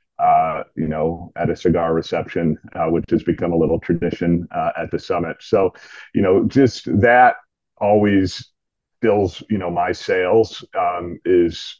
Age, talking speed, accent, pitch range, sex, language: 40-59, 160 wpm, American, 90-130 Hz, male, English